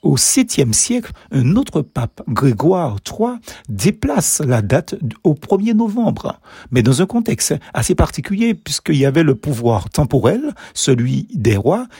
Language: French